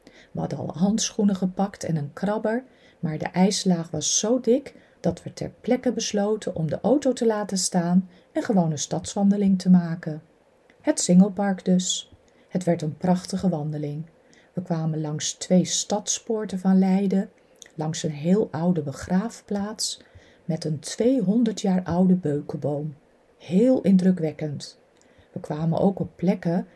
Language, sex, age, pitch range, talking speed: Dutch, female, 40-59, 160-205 Hz, 145 wpm